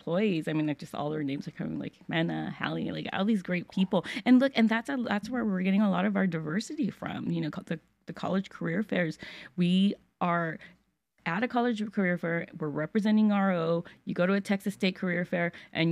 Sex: female